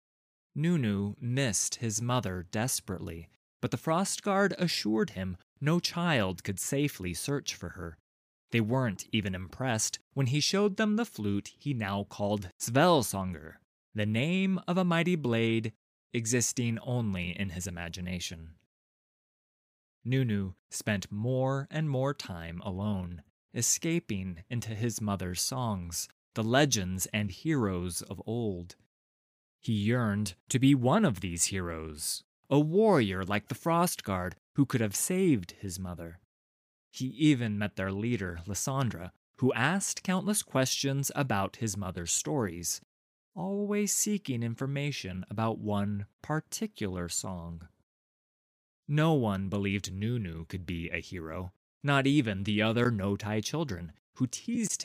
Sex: male